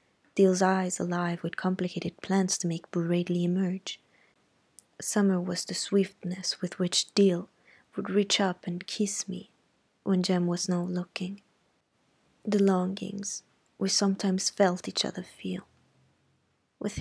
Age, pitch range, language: 20-39, 175-195 Hz, Italian